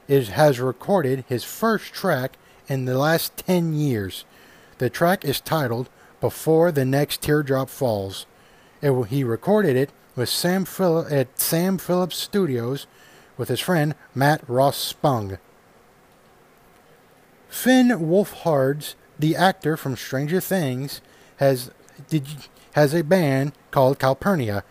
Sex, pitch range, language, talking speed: male, 130-170 Hz, English, 125 wpm